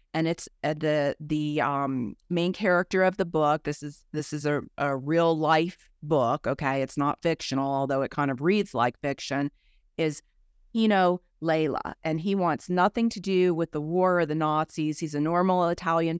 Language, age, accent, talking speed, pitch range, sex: English, 40-59, American, 180 wpm, 150-185 Hz, female